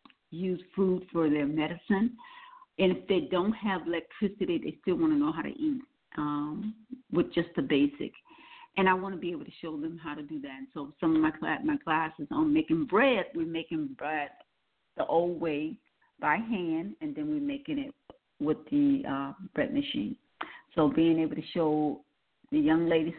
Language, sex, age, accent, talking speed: English, female, 50-69, American, 190 wpm